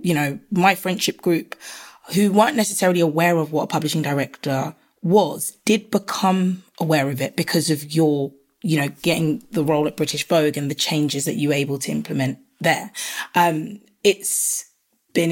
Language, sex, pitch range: English, female, 155-190 Hz